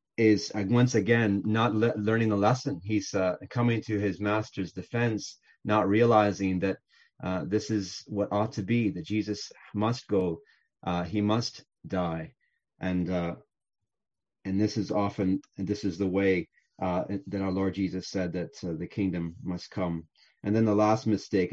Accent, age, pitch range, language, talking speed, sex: American, 30-49, 100-115 Hz, English, 175 wpm, male